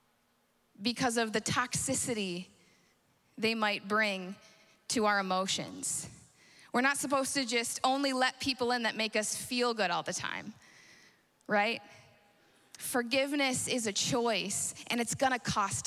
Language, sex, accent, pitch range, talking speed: English, female, American, 205-270 Hz, 135 wpm